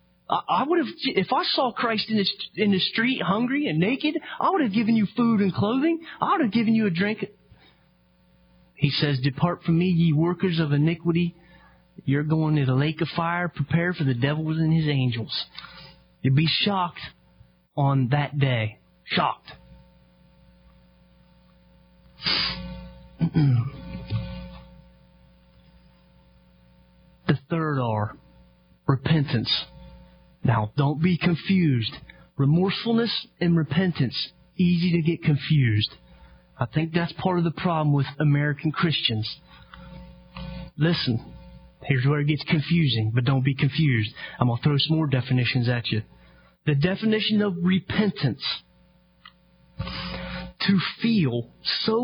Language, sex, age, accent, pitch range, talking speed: English, male, 30-49, American, 110-180 Hz, 130 wpm